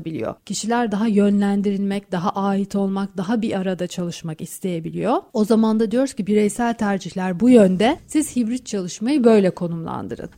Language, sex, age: Turkish, female, 40-59